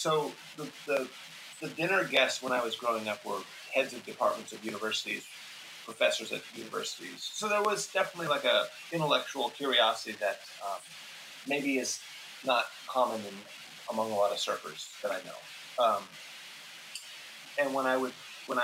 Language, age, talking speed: Portuguese, 30-49, 160 wpm